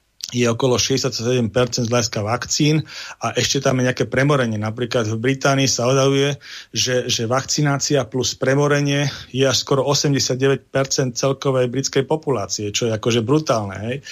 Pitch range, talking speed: 115-135 Hz, 140 wpm